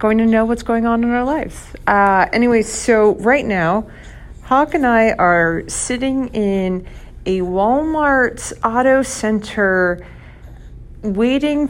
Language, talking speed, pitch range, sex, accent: English, 130 wpm, 185-240 Hz, female, American